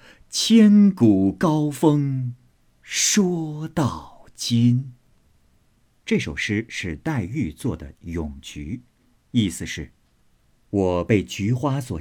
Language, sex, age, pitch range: Chinese, male, 50-69, 95-130 Hz